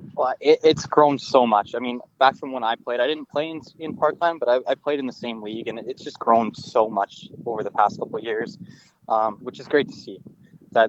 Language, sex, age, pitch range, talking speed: English, male, 20-39, 110-130 Hz, 255 wpm